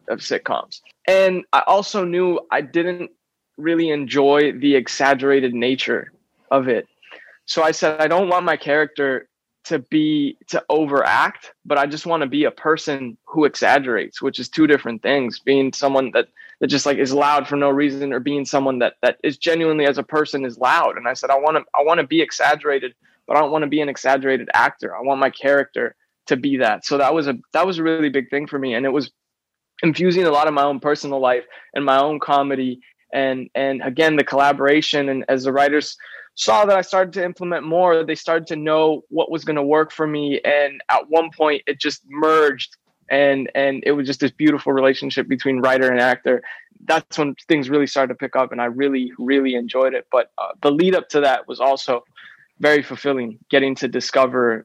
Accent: American